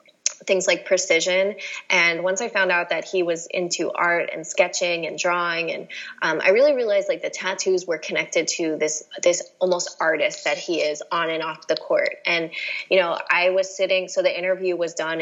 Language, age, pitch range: English, 20-39, 170-215 Hz